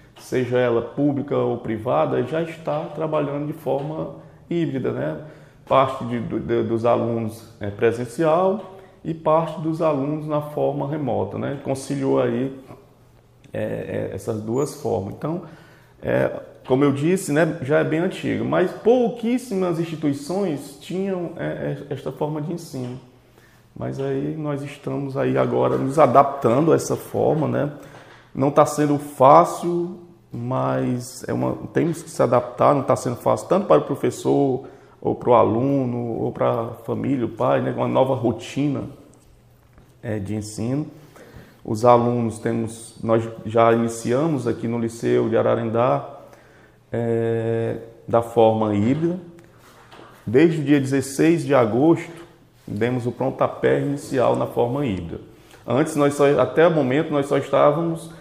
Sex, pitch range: male, 115-155 Hz